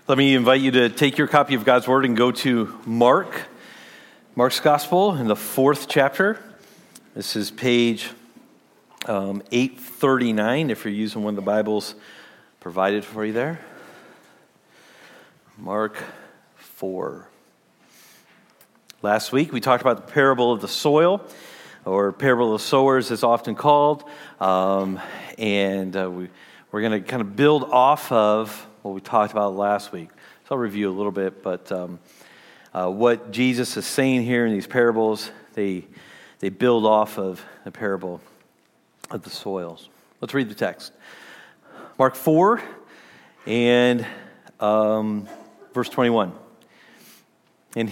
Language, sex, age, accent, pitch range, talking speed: English, male, 40-59, American, 105-135 Hz, 140 wpm